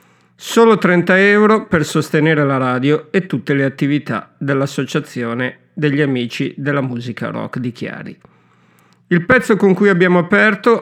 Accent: native